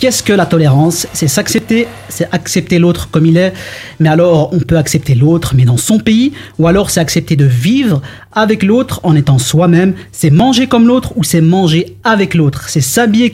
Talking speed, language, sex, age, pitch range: 200 wpm, French, male, 30-49, 145-185 Hz